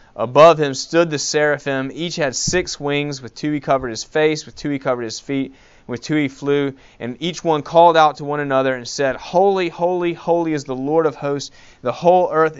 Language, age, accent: English, 30-49, American